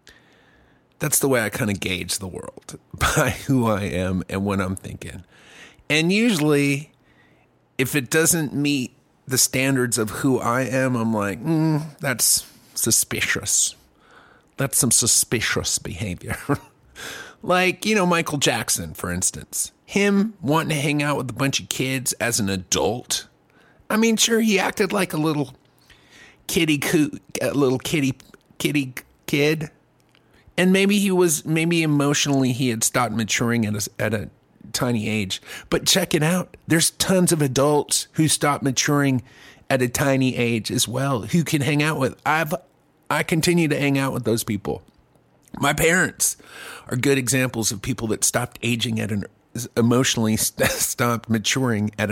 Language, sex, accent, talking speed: English, male, American, 155 wpm